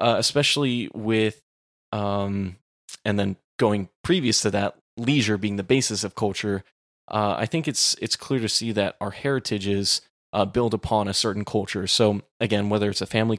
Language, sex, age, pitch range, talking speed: English, male, 20-39, 100-115 Hz, 175 wpm